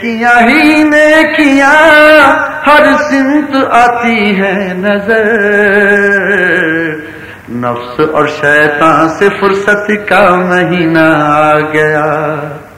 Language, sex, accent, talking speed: English, male, Indian, 65 wpm